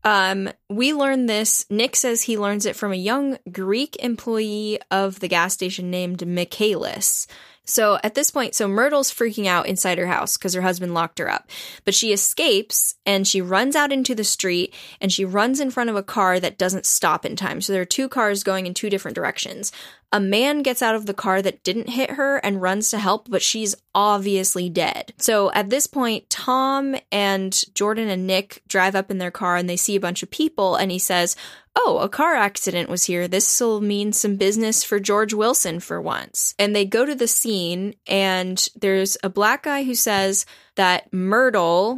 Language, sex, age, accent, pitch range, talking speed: English, female, 10-29, American, 185-230 Hz, 205 wpm